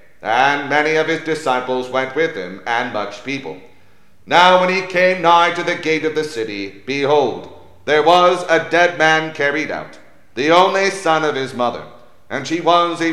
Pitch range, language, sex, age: 130-175 Hz, English, male, 40-59